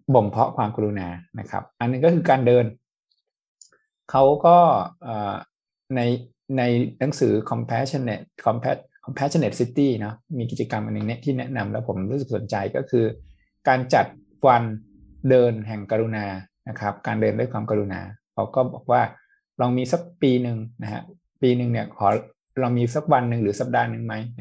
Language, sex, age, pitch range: Thai, male, 20-39, 105-130 Hz